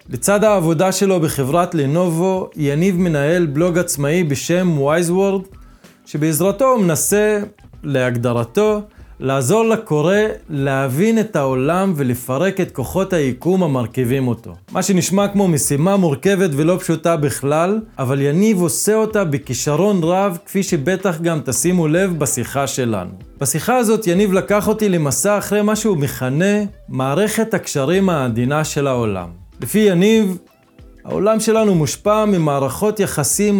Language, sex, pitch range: English, male, 140-195 Hz